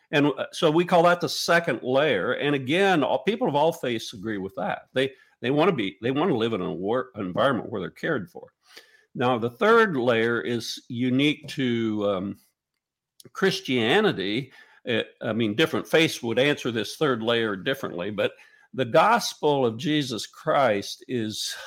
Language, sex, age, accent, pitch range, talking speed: English, male, 50-69, American, 120-170 Hz, 170 wpm